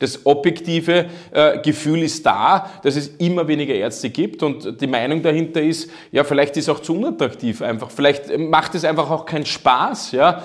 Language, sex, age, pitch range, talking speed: German, male, 30-49, 150-175 Hz, 190 wpm